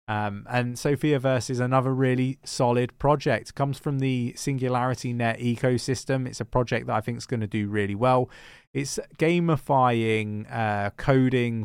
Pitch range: 105-125 Hz